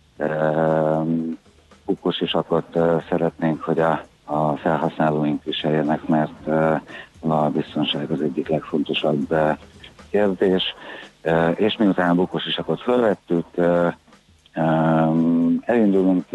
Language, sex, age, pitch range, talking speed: Hungarian, male, 60-79, 75-85 Hz, 75 wpm